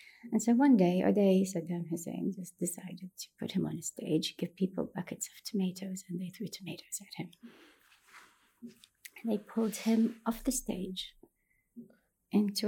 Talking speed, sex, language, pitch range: 165 wpm, female, English, 185-235 Hz